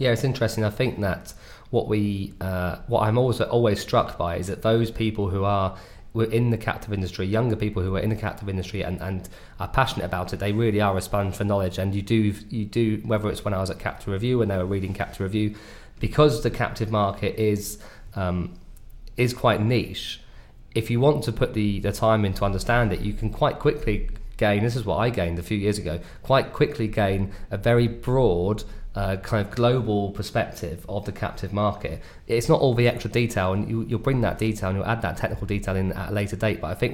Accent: British